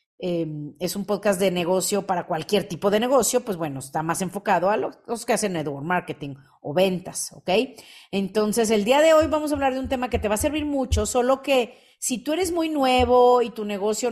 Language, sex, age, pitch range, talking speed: Spanish, female, 40-59, 200-270 Hz, 225 wpm